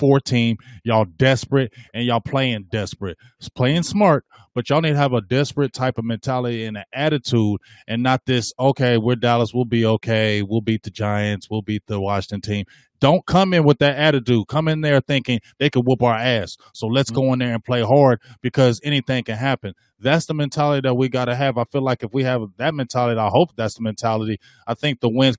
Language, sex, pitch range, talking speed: English, male, 120-175 Hz, 215 wpm